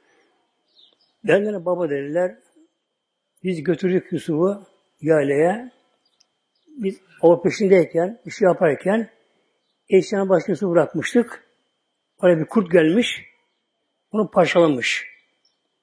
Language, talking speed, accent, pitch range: Turkish, 90 wpm, native, 170-230 Hz